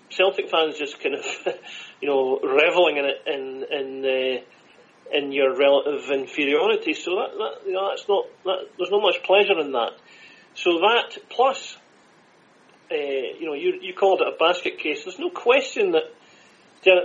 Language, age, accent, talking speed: English, 40-59, British, 175 wpm